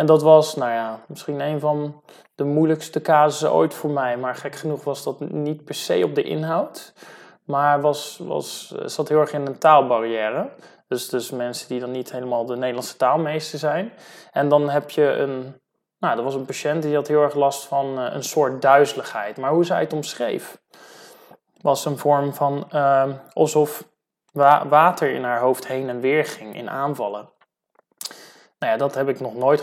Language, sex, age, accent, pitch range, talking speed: Dutch, male, 20-39, Dutch, 130-155 Hz, 190 wpm